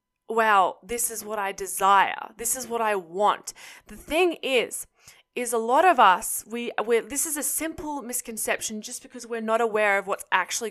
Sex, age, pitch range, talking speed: female, 10-29, 200-245 Hz, 195 wpm